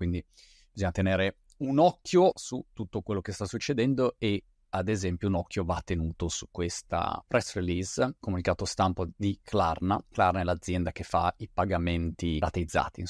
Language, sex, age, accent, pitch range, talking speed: Italian, male, 30-49, native, 90-115 Hz, 160 wpm